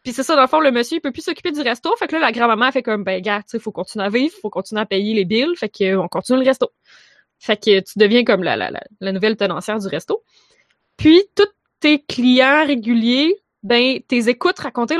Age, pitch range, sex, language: 20-39, 210-270 Hz, female, French